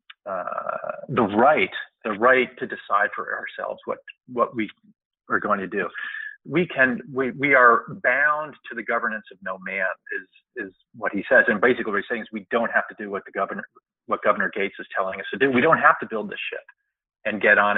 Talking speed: 220 wpm